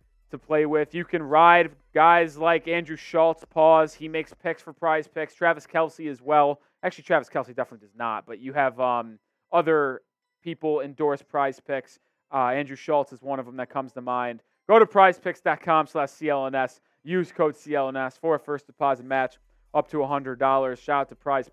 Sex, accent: male, American